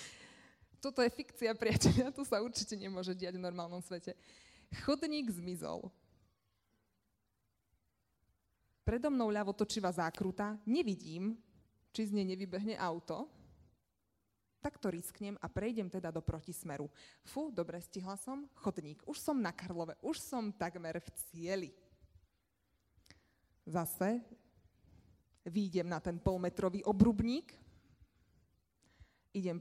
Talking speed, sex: 105 wpm, female